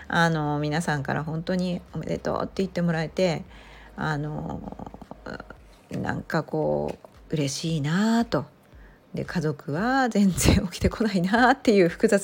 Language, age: Japanese, 40-59